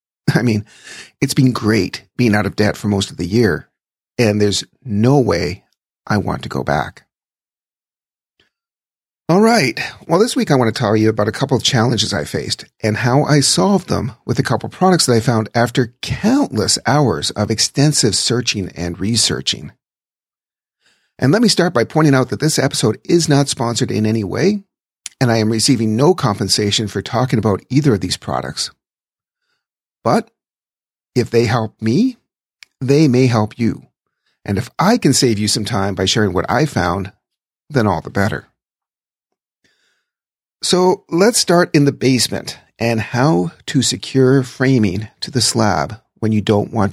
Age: 40-59